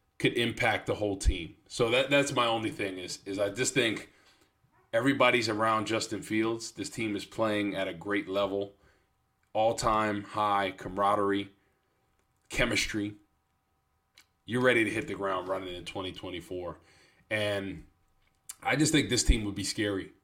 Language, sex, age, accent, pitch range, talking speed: English, male, 20-39, American, 100-120 Hz, 150 wpm